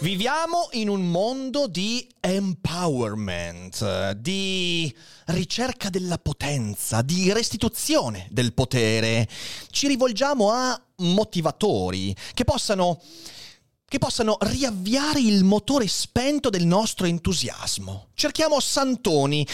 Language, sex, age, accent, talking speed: Italian, male, 30-49, native, 95 wpm